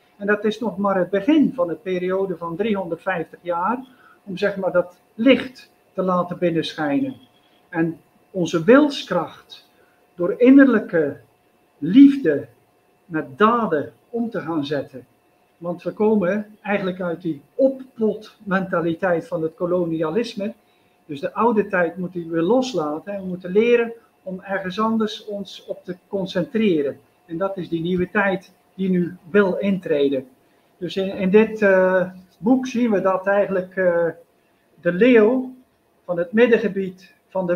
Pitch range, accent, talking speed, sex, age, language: 175-220 Hz, Dutch, 140 wpm, male, 50-69, Dutch